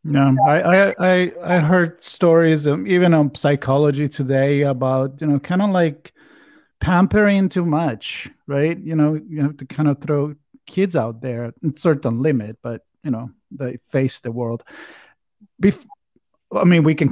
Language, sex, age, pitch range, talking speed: English, male, 40-59, 135-175 Hz, 170 wpm